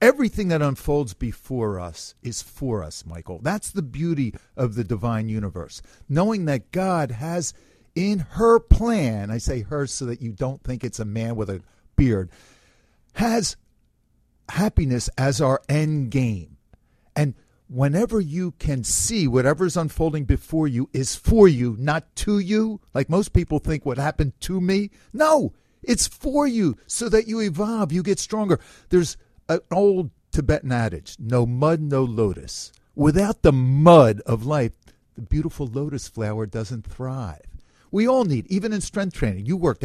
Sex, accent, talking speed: male, American, 160 wpm